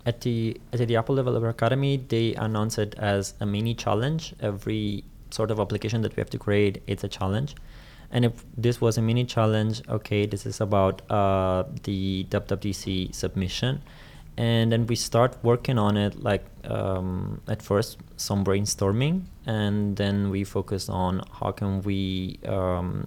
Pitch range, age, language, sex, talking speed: 100-120 Hz, 20-39, English, male, 165 wpm